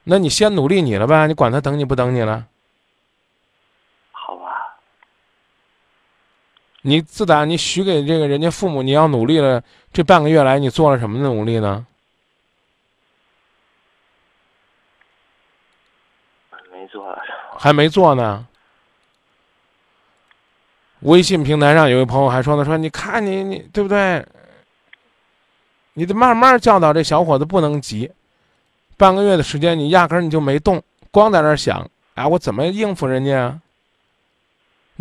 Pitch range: 120-165 Hz